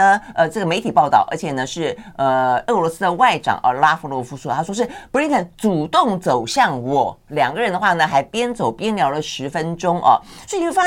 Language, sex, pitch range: Chinese, female, 130-210 Hz